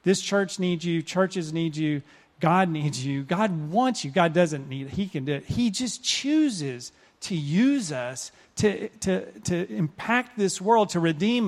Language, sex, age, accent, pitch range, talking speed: English, male, 40-59, American, 170-245 Hz, 185 wpm